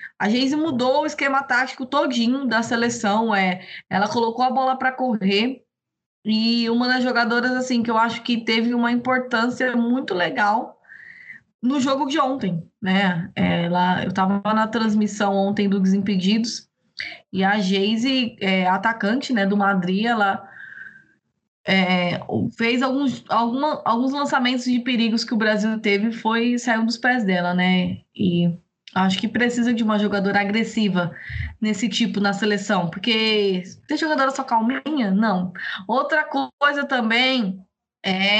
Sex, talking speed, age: female, 145 wpm, 20-39